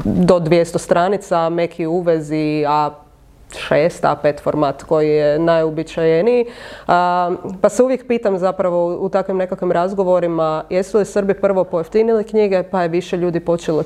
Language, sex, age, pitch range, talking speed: English, female, 30-49, 160-190 Hz, 145 wpm